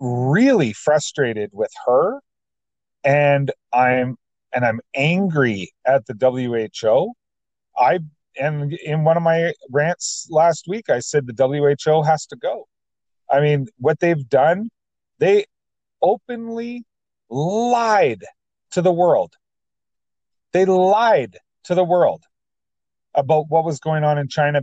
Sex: male